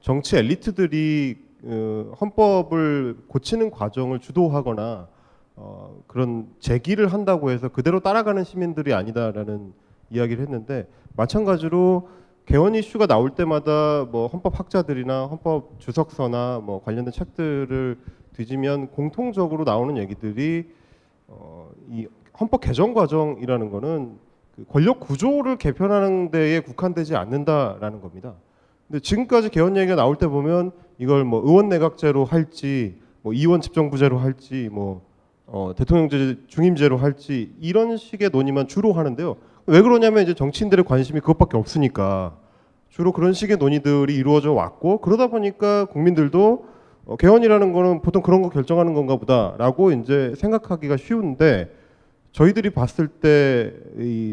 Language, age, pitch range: Korean, 30-49, 125-180 Hz